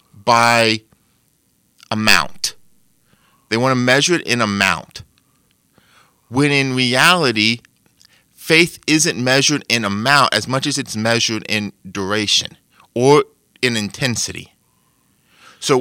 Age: 30-49